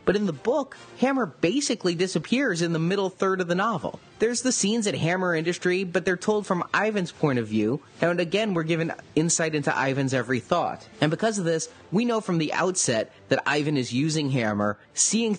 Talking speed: 205 wpm